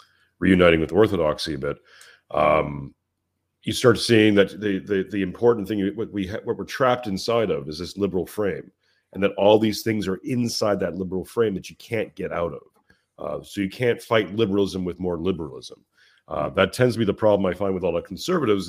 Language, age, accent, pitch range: English, 40-59, American, 95-115 Hz